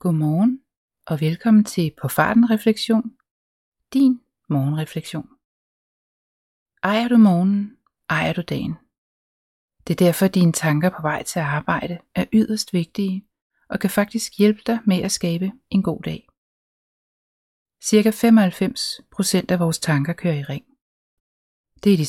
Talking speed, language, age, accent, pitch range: 135 wpm, Danish, 30-49, native, 155-215 Hz